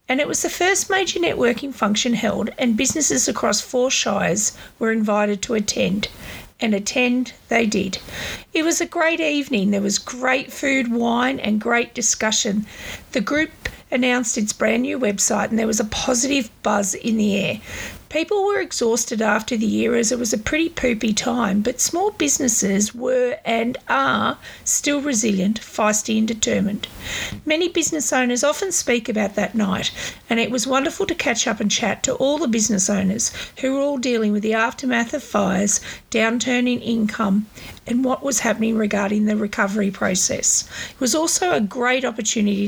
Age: 50-69